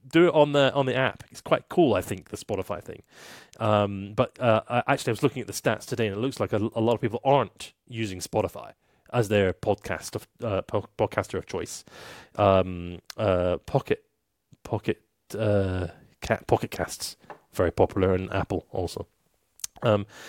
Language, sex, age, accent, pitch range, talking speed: English, male, 30-49, British, 100-125 Hz, 175 wpm